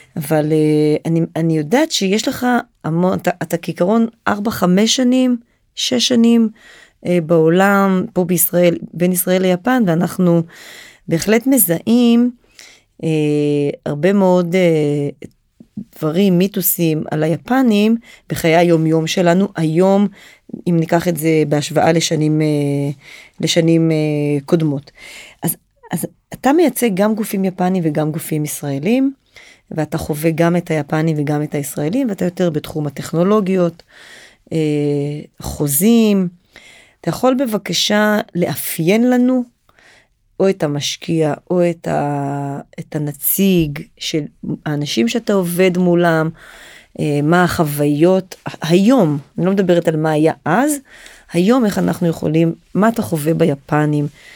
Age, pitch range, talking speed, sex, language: 30-49, 155-200 Hz, 110 wpm, female, Hebrew